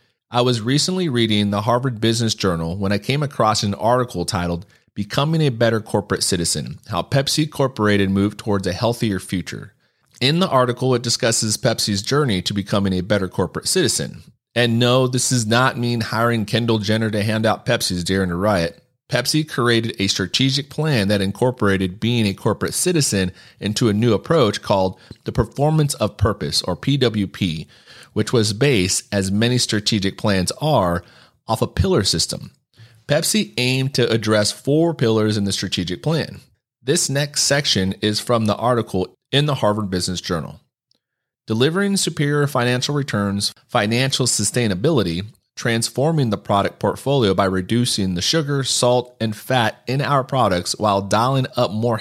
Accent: American